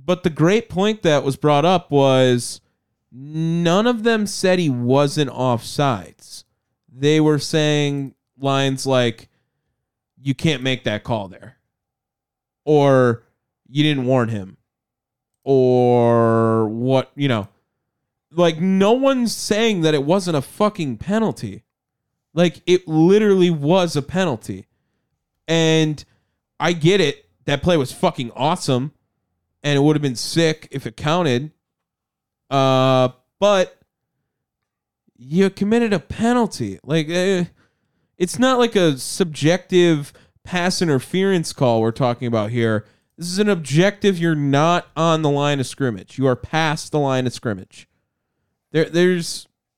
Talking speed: 135 wpm